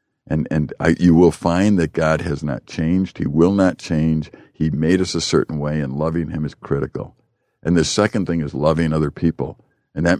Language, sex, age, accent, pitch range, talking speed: English, male, 60-79, American, 75-90 Hz, 210 wpm